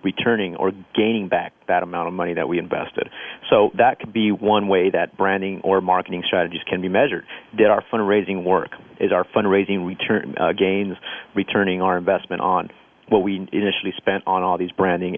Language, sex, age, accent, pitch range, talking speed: English, male, 40-59, American, 95-105 Hz, 185 wpm